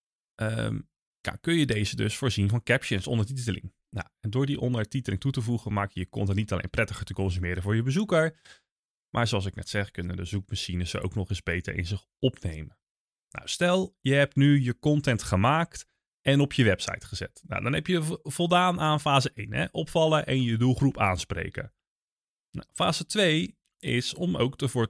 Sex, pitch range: male, 105-140 Hz